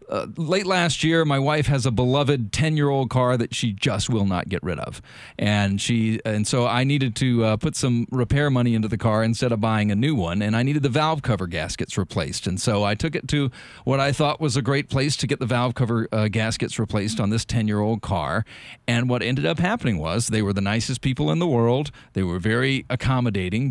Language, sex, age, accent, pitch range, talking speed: English, male, 40-59, American, 110-135 Hz, 230 wpm